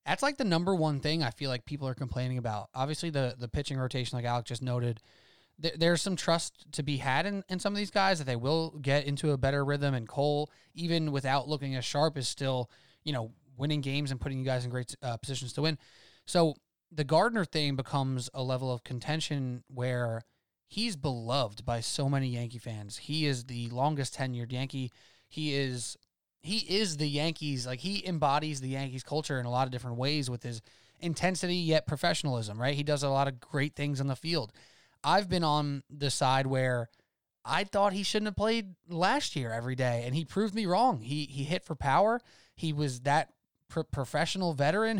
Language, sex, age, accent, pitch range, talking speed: English, male, 20-39, American, 130-170 Hz, 205 wpm